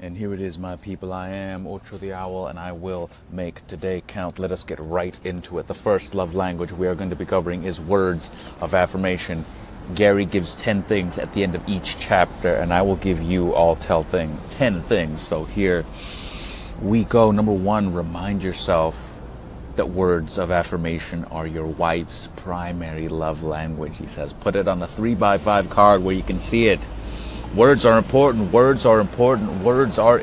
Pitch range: 85-100 Hz